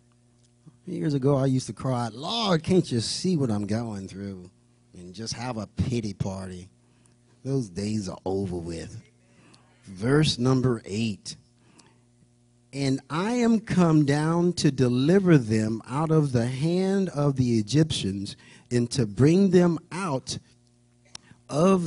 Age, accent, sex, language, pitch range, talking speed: 40-59, American, male, English, 120-160 Hz, 135 wpm